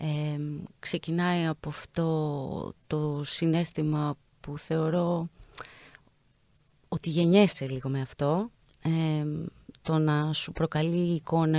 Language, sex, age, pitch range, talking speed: Greek, female, 30-49, 150-210 Hz, 100 wpm